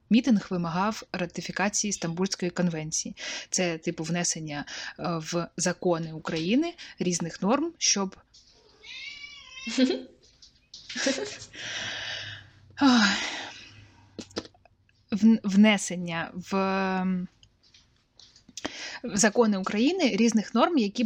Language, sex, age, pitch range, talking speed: Ukrainian, female, 20-39, 175-220 Hz, 60 wpm